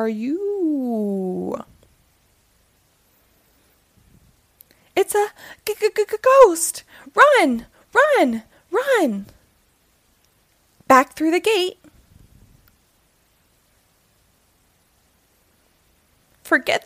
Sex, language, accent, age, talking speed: female, English, American, 20-39, 45 wpm